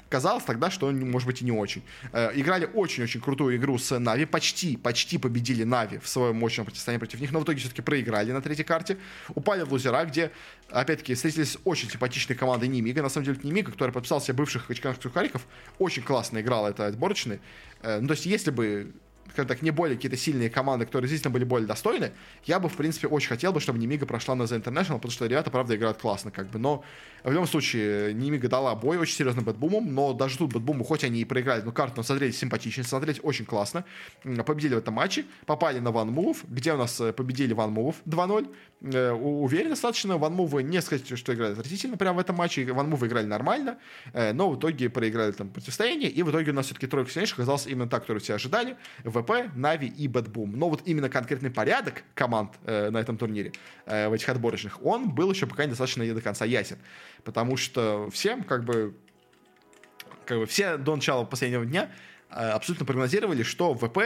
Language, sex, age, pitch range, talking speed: Russian, male, 20-39, 115-155 Hz, 200 wpm